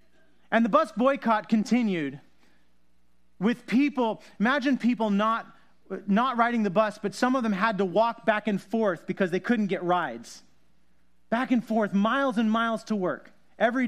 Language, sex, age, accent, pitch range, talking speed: English, male, 30-49, American, 165-225 Hz, 165 wpm